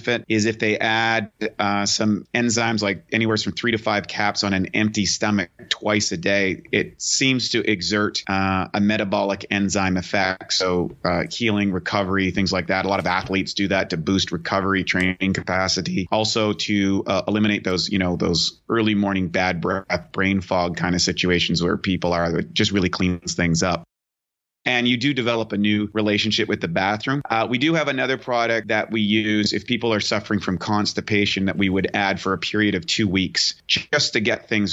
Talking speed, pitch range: 195 wpm, 95-110 Hz